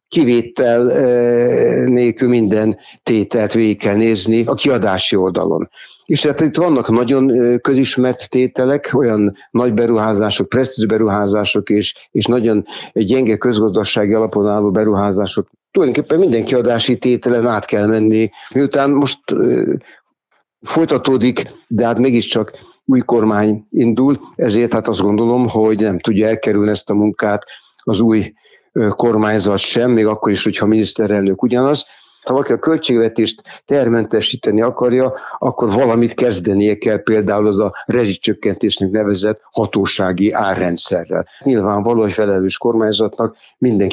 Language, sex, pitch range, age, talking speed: Hungarian, male, 105-125 Hz, 60-79, 120 wpm